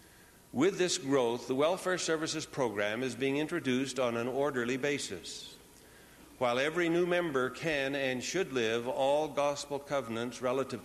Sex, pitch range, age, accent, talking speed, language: male, 120-155 Hz, 60-79, American, 145 wpm, English